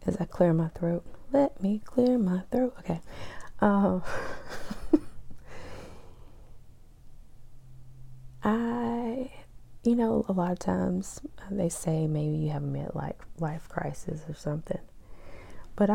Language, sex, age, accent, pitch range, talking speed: English, female, 20-39, American, 155-205 Hz, 115 wpm